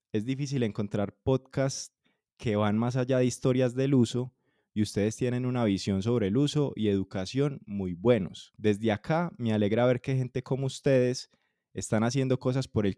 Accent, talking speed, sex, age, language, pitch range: Colombian, 175 wpm, male, 20-39, Spanish, 105-135 Hz